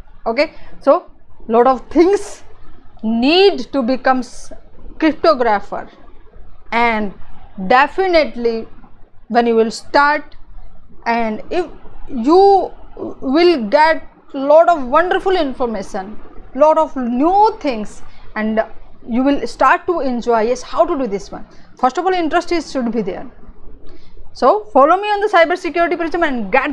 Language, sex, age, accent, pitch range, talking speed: English, female, 20-39, Indian, 230-330 Hz, 130 wpm